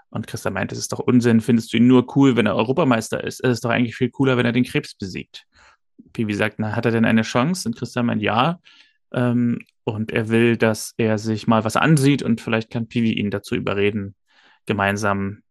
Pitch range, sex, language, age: 115-130 Hz, male, German, 30-49